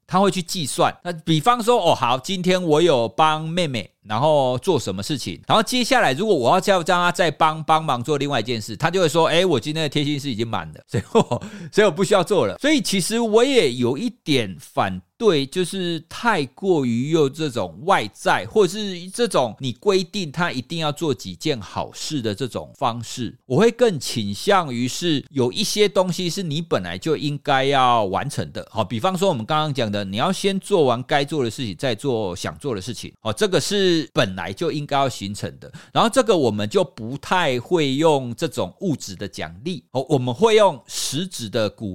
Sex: male